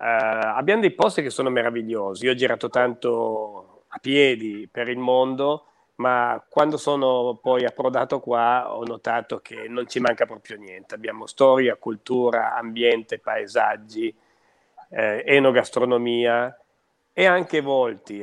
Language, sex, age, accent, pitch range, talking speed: Italian, male, 40-59, native, 115-140 Hz, 130 wpm